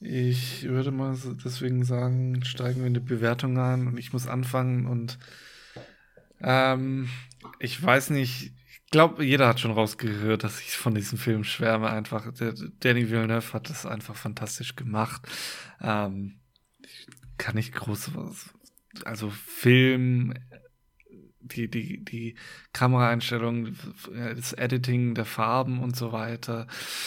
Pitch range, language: 115-130 Hz, German